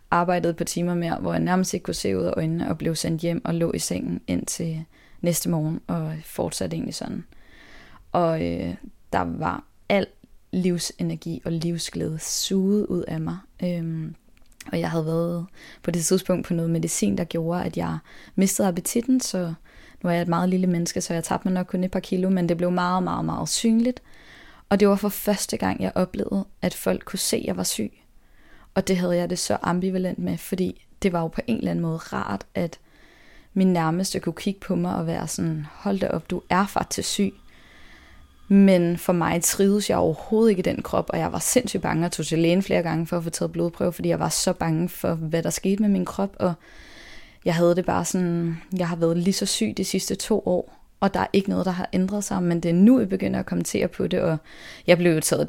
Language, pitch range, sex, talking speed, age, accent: Danish, 165-190 Hz, female, 225 wpm, 20-39, native